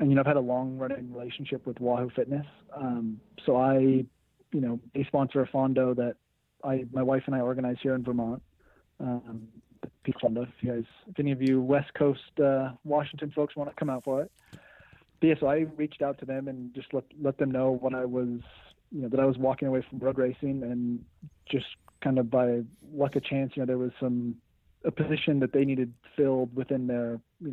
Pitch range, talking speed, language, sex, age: 120-140 Hz, 215 wpm, English, male, 30-49